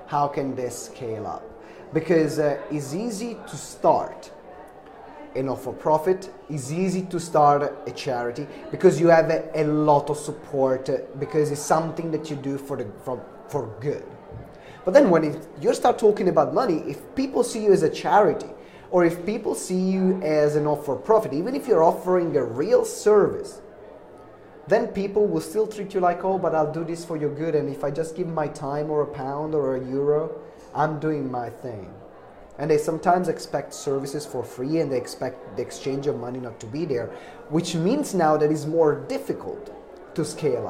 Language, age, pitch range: English, 30-49, 145-185 Hz